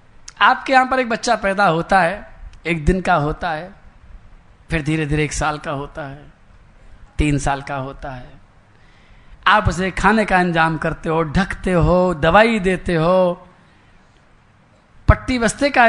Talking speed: 155 wpm